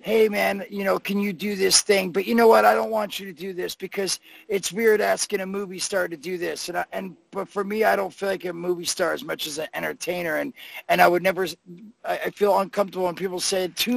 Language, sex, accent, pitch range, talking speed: English, male, American, 180-210 Hz, 260 wpm